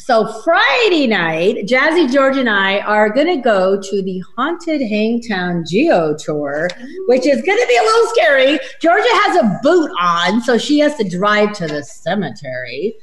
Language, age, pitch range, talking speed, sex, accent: English, 40-59, 205-295 Hz, 175 wpm, female, American